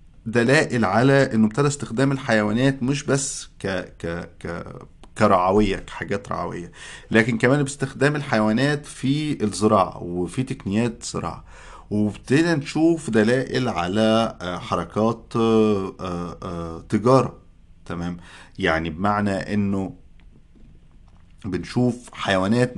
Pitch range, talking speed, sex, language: 95-130 Hz, 90 wpm, male, Arabic